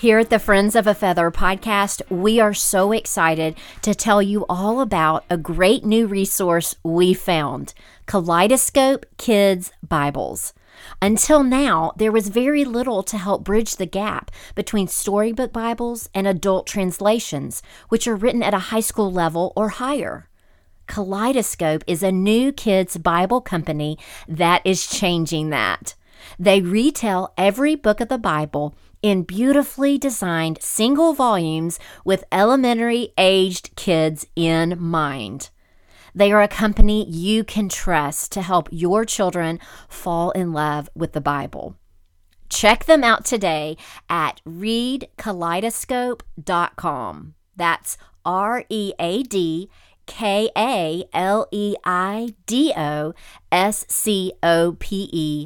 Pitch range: 165-220 Hz